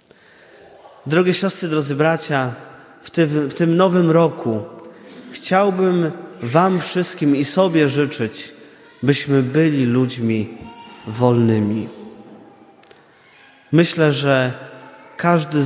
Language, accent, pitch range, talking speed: Polish, native, 125-165 Hz, 85 wpm